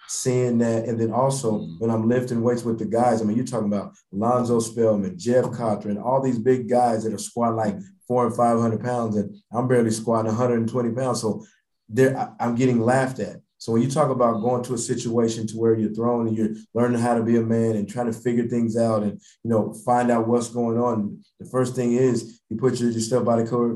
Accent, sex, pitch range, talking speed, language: American, male, 110-125 Hz, 225 wpm, English